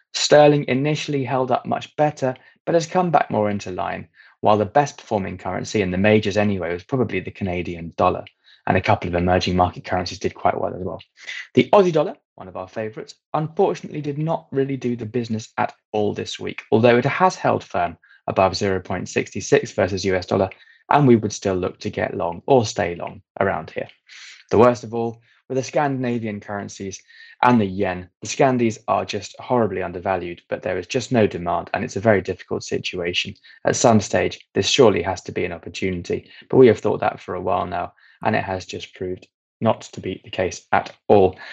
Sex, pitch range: male, 95-130 Hz